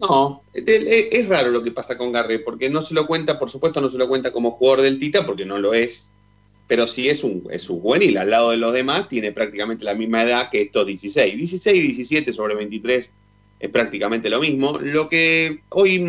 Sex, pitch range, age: male, 100-160 Hz, 30-49